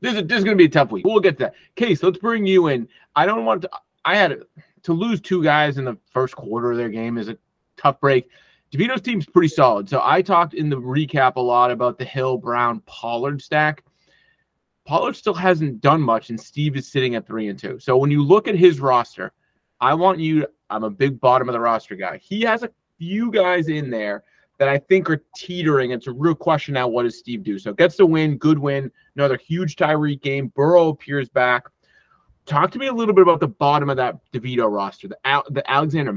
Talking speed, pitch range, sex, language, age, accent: 230 wpm, 130-175 Hz, male, English, 30-49, American